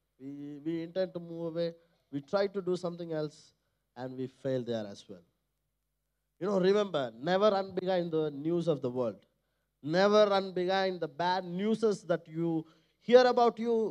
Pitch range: 170-235 Hz